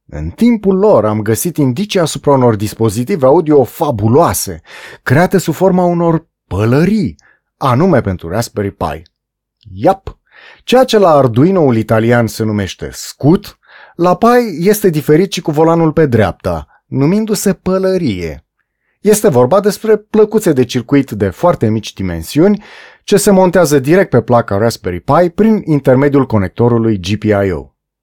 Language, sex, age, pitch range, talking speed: Romanian, male, 30-49, 110-175 Hz, 135 wpm